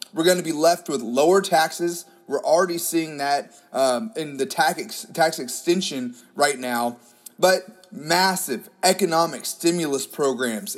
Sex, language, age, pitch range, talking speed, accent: male, English, 30-49, 135-175 Hz, 145 wpm, American